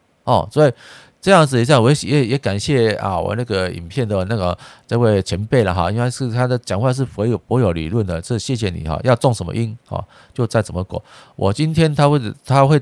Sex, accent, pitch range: male, native, 100-130 Hz